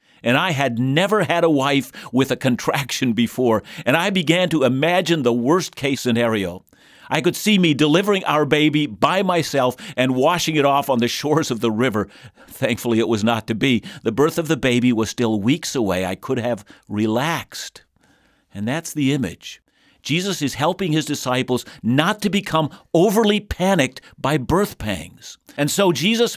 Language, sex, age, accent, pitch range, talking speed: English, male, 50-69, American, 120-160 Hz, 175 wpm